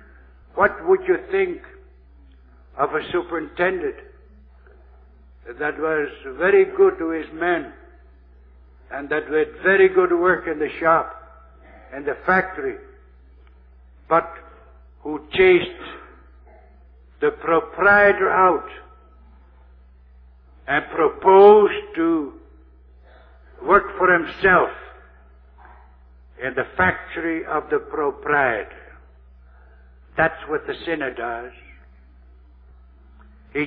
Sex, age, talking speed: male, 60-79, 90 wpm